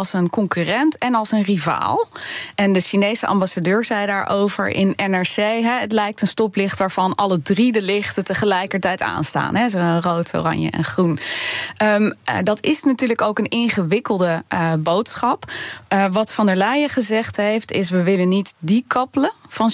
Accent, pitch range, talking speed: Dutch, 180-220 Hz, 165 wpm